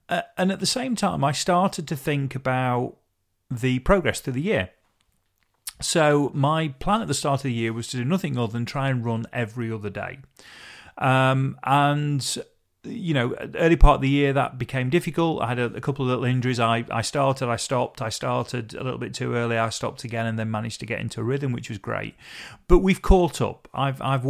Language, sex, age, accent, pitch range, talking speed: English, male, 40-59, British, 115-145 Hz, 220 wpm